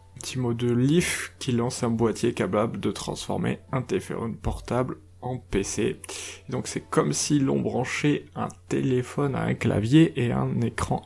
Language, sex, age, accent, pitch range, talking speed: French, male, 20-39, French, 95-150 Hz, 170 wpm